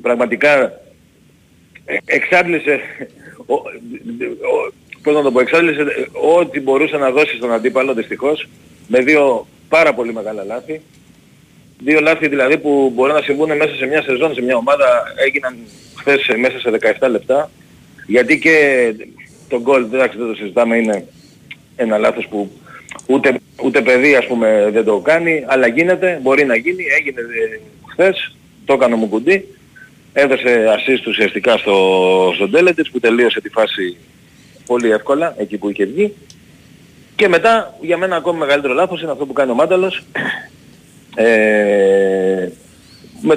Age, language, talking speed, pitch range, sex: 40-59, Greek, 140 wpm, 115-170 Hz, male